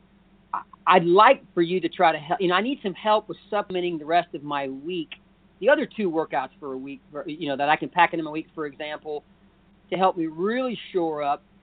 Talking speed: 230 wpm